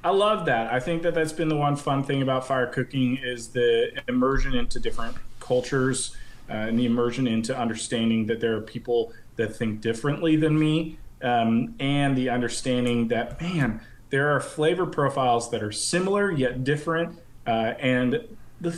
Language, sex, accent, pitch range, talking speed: English, male, American, 115-140 Hz, 175 wpm